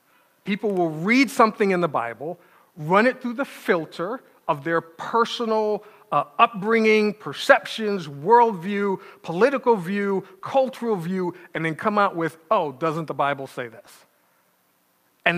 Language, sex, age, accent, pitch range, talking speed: English, male, 40-59, American, 160-215 Hz, 135 wpm